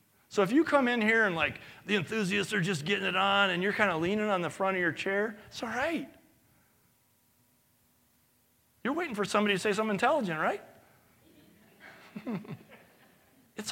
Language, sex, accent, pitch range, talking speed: English, male, American, 130-210 Hz, 170 wpm